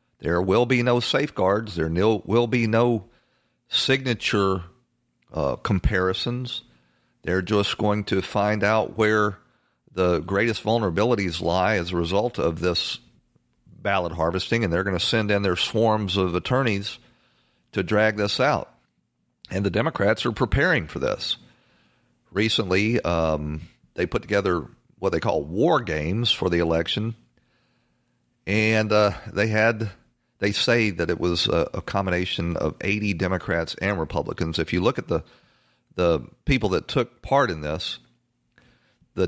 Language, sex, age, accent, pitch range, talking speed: English, male, 50-69, American, 85-110 Hz, 140 wpm